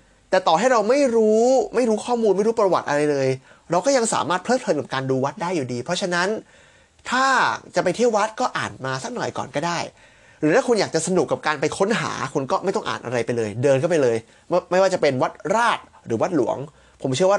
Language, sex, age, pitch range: Thai, male, 20-39, 145-195 Hz